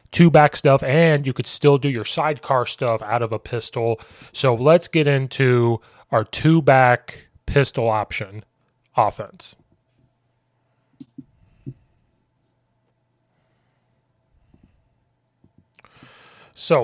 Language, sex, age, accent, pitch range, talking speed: English, male, 30-49, American, 115-140 Hz, 95 wpm